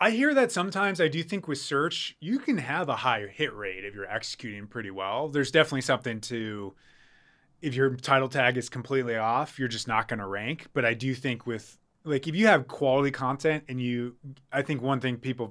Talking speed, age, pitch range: 215 wpm, 20-39, 115-145 Hz